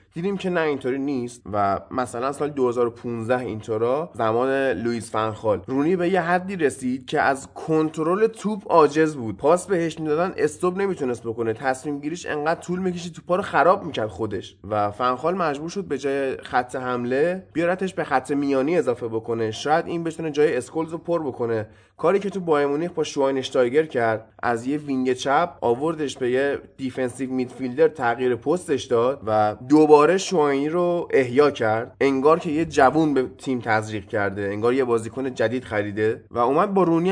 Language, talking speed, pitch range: Persian, 170 wpm, 120-170 Hz